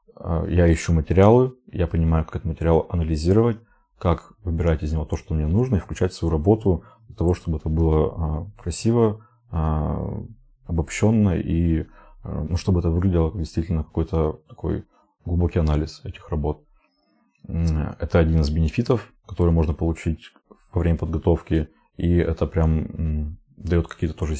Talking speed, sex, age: 140 wpm, male, 20-39